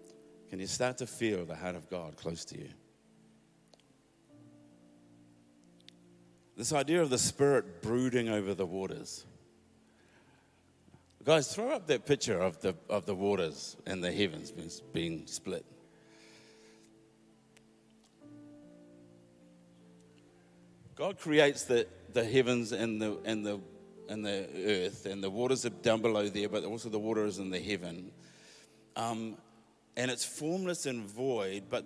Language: English